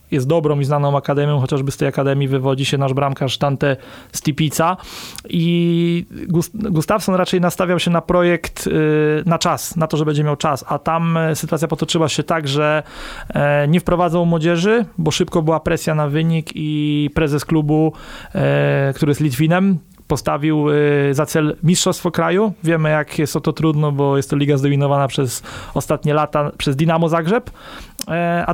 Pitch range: 150-175 Hz